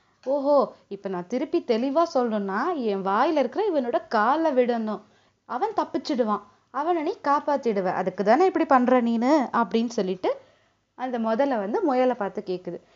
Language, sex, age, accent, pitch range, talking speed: Tamil, female, 20-39, native, 210-310 Hz, 130 wpm